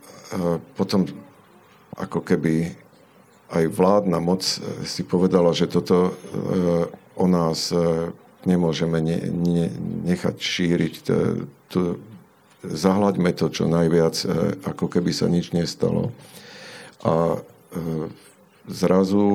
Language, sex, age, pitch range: Slovak, male, 50-69, 80-90 Hz